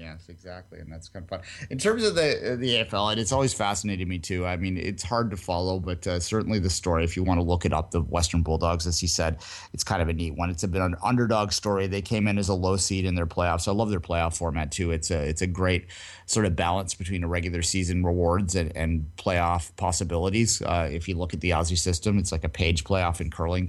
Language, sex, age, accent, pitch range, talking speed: English, male, 30-49, American, 85-110 Hz, 265 wpm